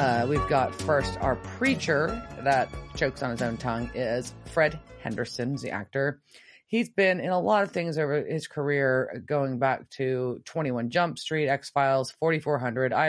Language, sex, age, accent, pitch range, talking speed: English, female, 30-49, American, 125-155 Hz, 160 wpm